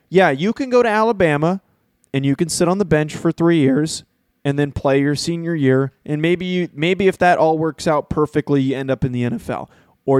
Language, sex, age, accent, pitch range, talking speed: English, male, 20-39, American, 140-175 Hz, 230 wpm